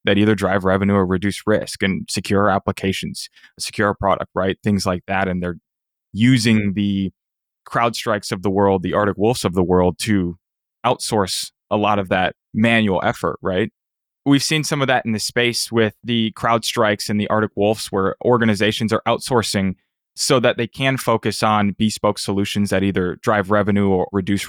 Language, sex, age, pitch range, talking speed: English, male, 20-39, 100-120 Hz, 185 wpm